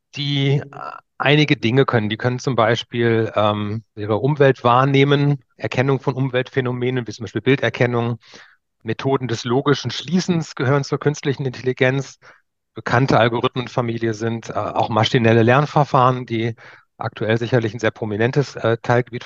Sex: male